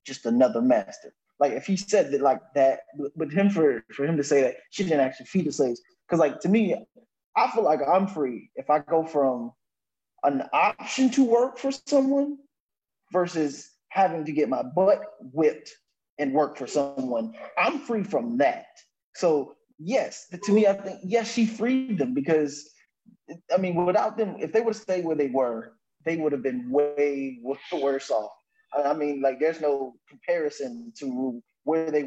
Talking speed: 180 wpm